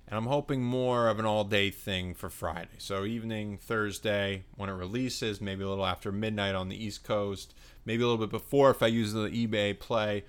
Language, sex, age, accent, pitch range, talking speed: English, male, 30-49, American, 100-140 Hz, 210 wpm